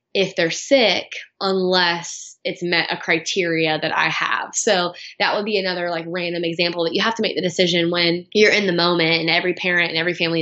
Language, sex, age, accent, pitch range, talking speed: English, female, 20-39, American, 170-195 Hz, 215 wpm